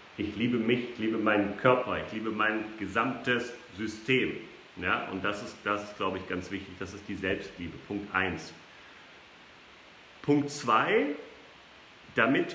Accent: German